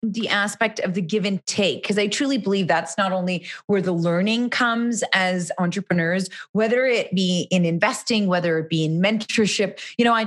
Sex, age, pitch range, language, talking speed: female, 30-49, 180-225 Hz, English, 195 wpm